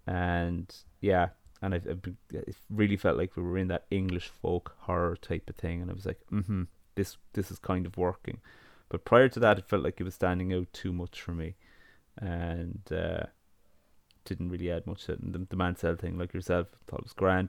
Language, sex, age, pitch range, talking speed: English, male, 20-39, 85-100 Hz, 215 wpm